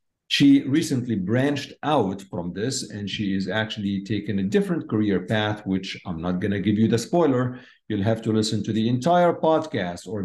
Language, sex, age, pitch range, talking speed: English, male, 50-69, 100-135 Hz, 195 wpm